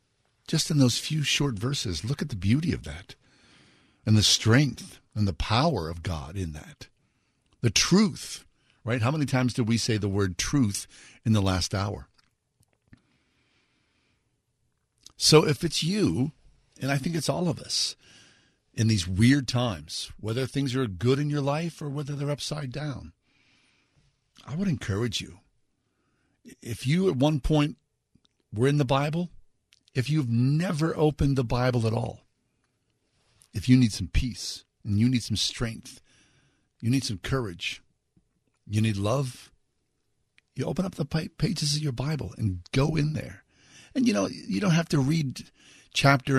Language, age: English, 50-69